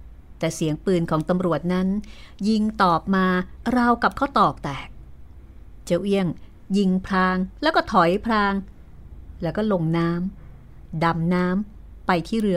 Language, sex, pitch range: Thai, female, 150-200 Hz